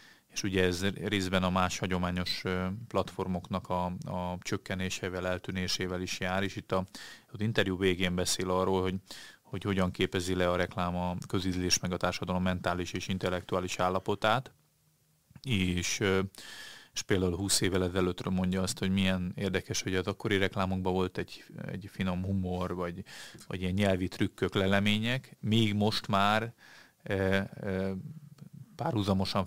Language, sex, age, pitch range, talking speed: Hungarian, male, 30-49, 90-100 Hz, 140 wpm